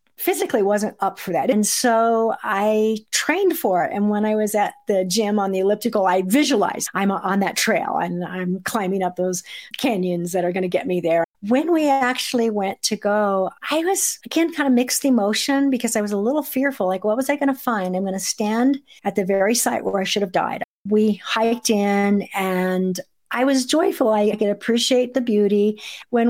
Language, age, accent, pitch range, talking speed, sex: English, 50-69, American, 185-225 Hz, 210 wpm, female